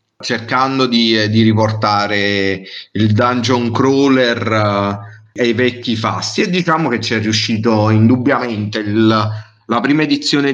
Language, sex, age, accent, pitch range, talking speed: Italian, male, 30-49, native, 110-135 Hz, 130 wpm